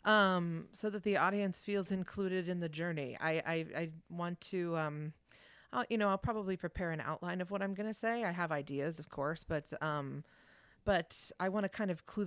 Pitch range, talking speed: 155-190 Hz, 210 wpm